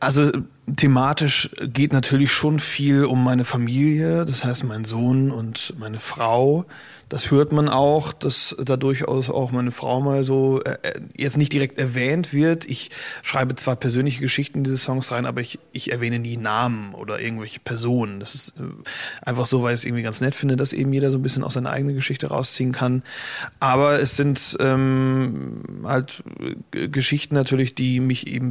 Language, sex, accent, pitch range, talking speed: German, male, German, 125-140 Hz, 175 wpm